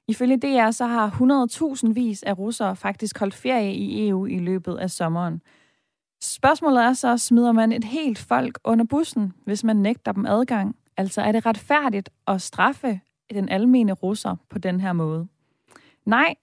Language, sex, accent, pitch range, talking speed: Danish, female, native, 190-240 Hz, 170 wpm